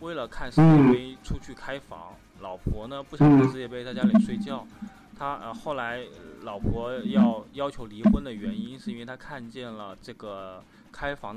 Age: 20-39